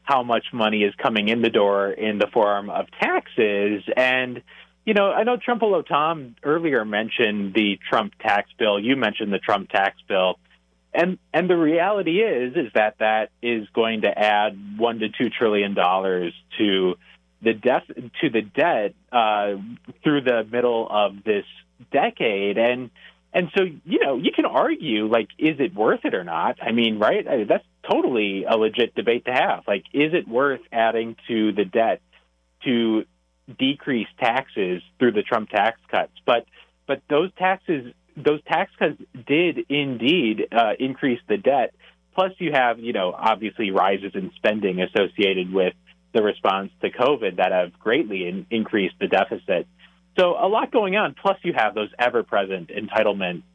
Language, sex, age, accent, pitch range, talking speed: English, male, 30-49, American, 100-140 Hz, 165 wpm